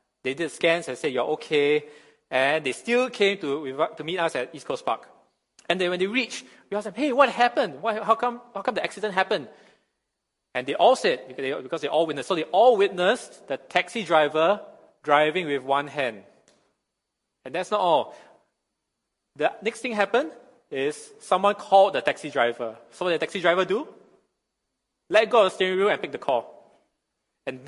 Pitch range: 155-235 Hz